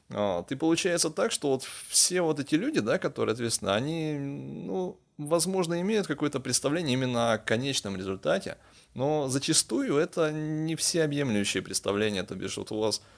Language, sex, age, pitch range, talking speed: Russian, male, 20-39, 105-150 Hz, 160 wpm